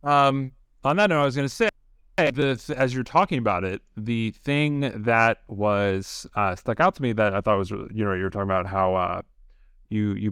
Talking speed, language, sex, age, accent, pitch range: 225 wpm, English, male, 30-49, American, 100-130 Hz